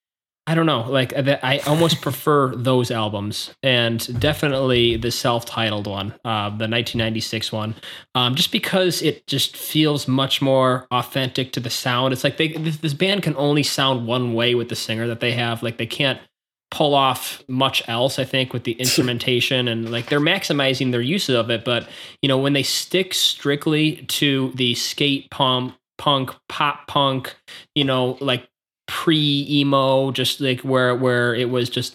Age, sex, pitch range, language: 20-39, male, 120-140 Hz, English